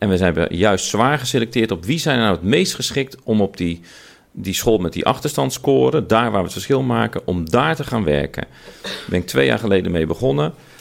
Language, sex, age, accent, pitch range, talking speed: Dutch, male, 40-59, Dutch, 85-125 Hz, 230 wpm